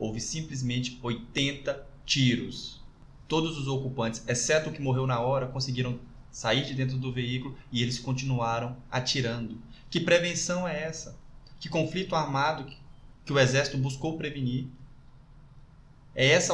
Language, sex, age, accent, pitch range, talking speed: Portuguese, male, 20-39, Brazilian, 120-140 Hz, 135 wpm